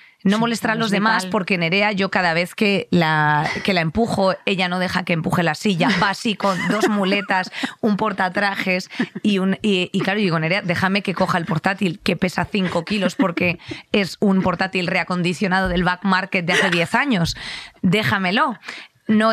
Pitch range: 175-215 Hz